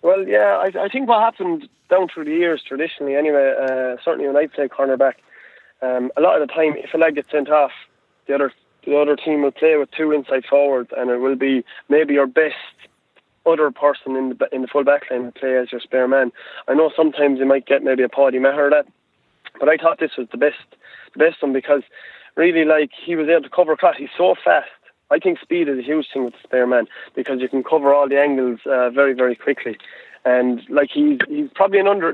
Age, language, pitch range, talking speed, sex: 20-39, English, 130-160 Hz, 235 wpm, male